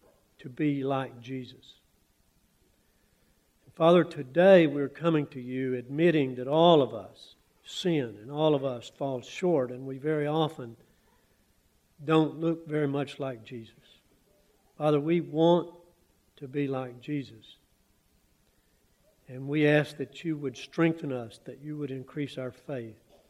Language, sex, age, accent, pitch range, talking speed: English, male, 60-79, American, 130-155 Hz, 135 wpm